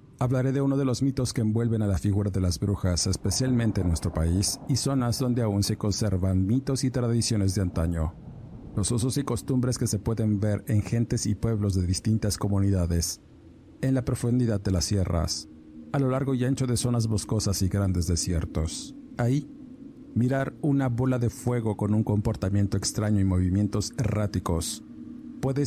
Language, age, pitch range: Spanish, 50-69, 95-130 Hz